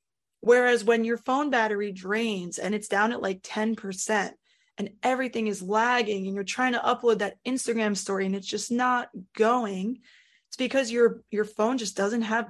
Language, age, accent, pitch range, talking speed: English, 20-39, American, 200-235 Hz, 180 wpm